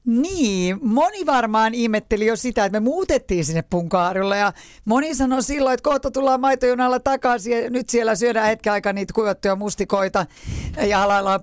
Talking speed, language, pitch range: 165 wpm, Finnish, 175-240 Hz